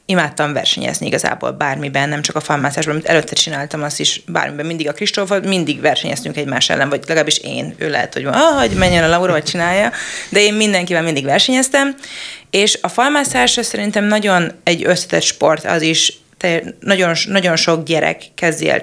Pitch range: 160-185 Hz